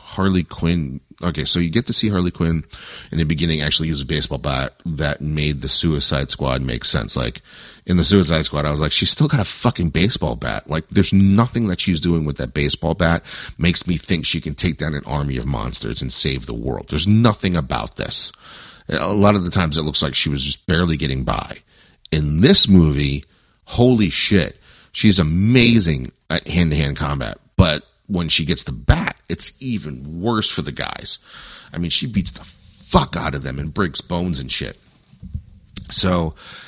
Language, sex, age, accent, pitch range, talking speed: English, male, 40-59, American, 75-95 Hz, 195 wpm